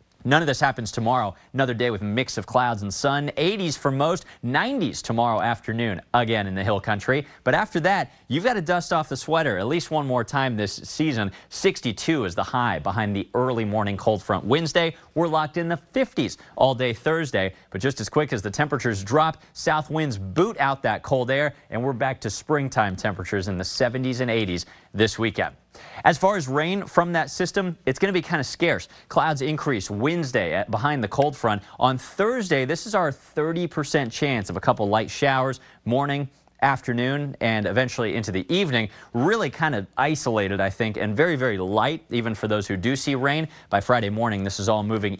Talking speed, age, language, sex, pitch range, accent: 205 wpm, 30-49, English, male, 105-150 Hz, American